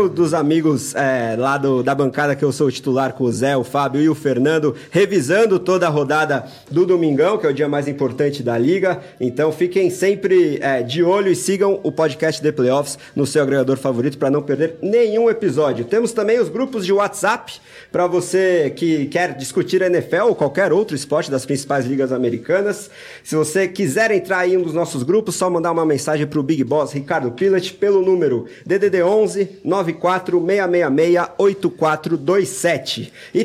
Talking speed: 180 wpm